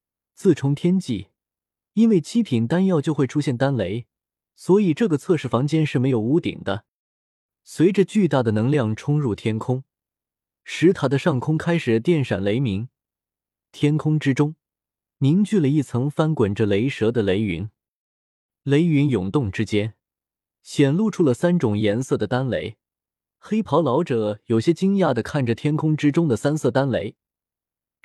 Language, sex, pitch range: Chinese, male, 115-165 Hz